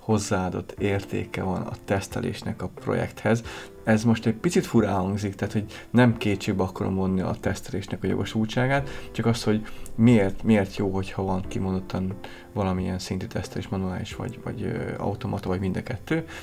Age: 30-49